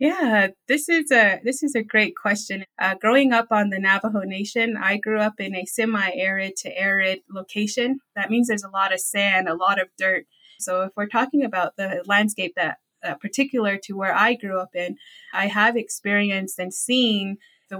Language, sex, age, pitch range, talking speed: English, female, 20-39, 190-215 Hz, 195 wpm